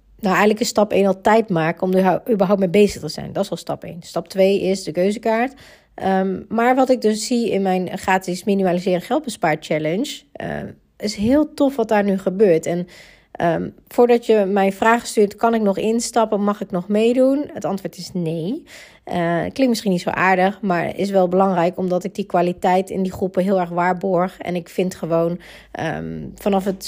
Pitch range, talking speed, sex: 175-205 Hz, 205 wpm, female